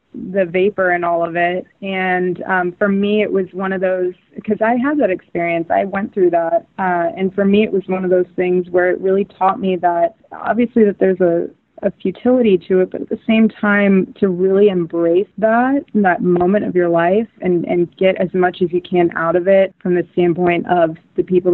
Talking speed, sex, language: 220 wpm, female, English